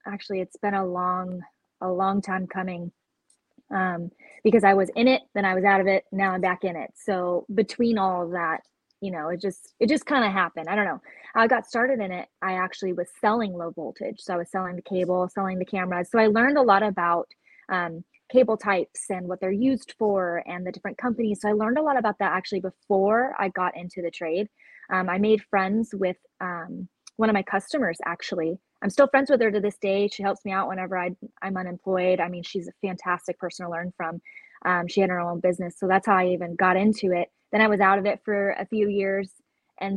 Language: English